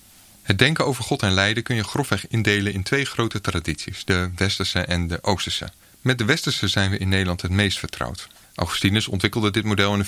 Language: Dutch